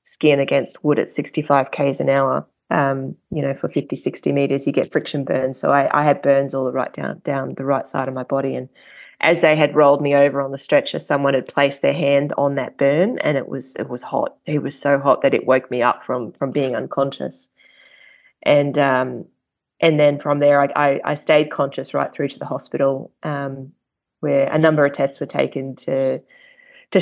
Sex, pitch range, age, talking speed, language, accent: female, 140-155 Hz, 20-39, 220 wpm, English, Australian